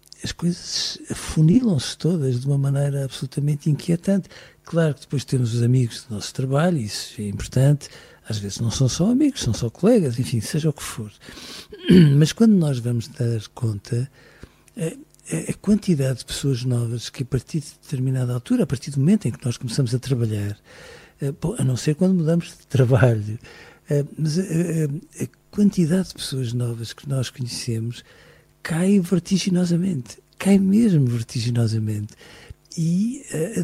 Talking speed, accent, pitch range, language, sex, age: 150 wpm, Portuguese, 120-165 Hz, Portuguese, male, 60-79